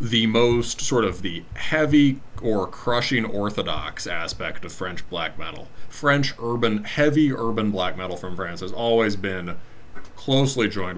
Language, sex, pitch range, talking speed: English, male, 95-120 Hz, 150 wpm